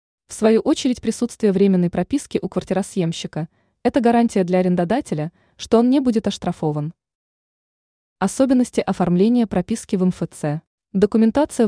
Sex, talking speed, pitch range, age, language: female, 120 wpm, 175-220 Hz, 20-39, Russian